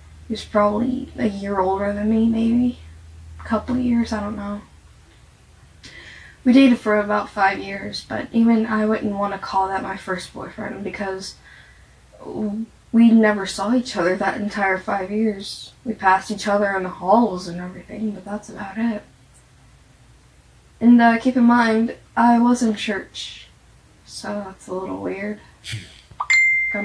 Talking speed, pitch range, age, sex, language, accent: 160 wpm, 195-230 Hz, 10-29, female, English, American